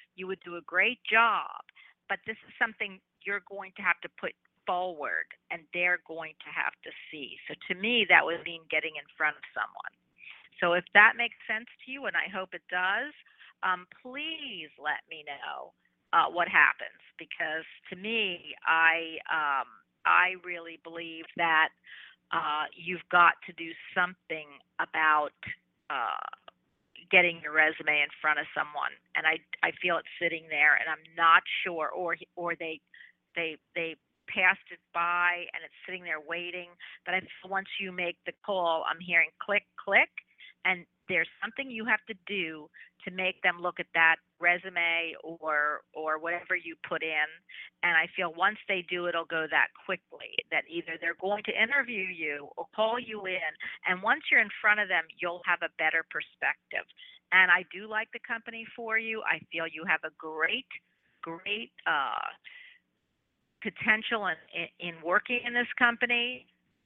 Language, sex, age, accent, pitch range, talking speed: English, female, 50-69, American, 165-215 Hz, 170 wpm